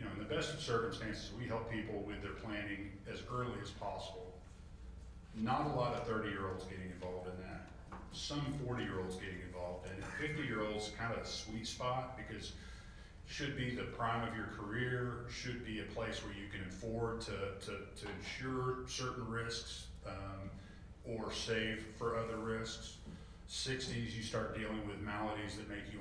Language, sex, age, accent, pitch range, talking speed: English, male, 40-59, American, 95-115 Hz, 180 wpm